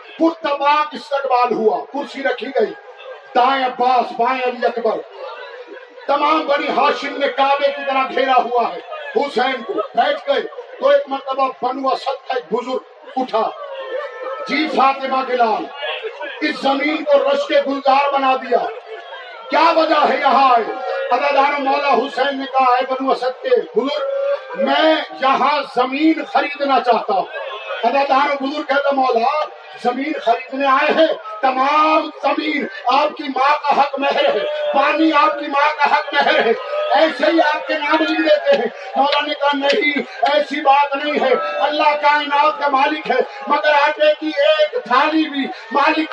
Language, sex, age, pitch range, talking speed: Urdu, male, 50-69, 265-300 Hz, 110 wpm